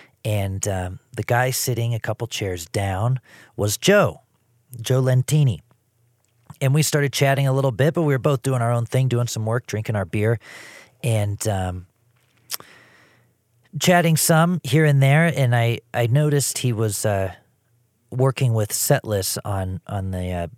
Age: 40-59